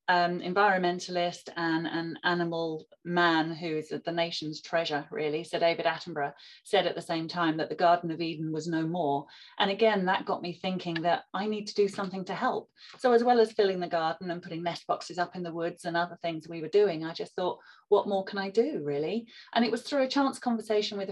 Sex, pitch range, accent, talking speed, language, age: female, 170-210 Hz, British, 225 wpm, English, 30-49